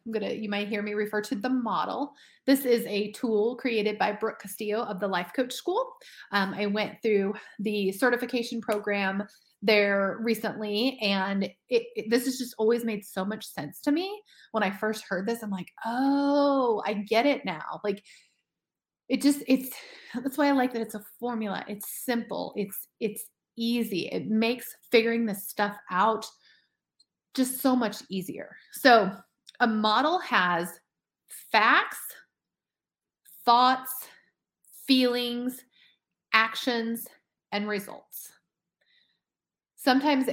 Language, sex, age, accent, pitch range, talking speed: English, female, 30-49, American, 205-255 Hz, 140 wpm